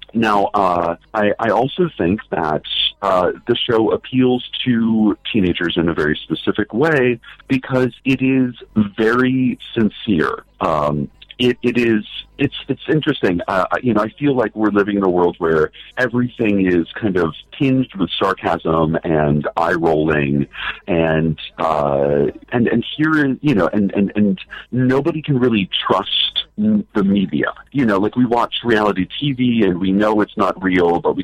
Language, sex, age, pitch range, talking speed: English, male, 40-59, 90-125 Hz, 160 wpm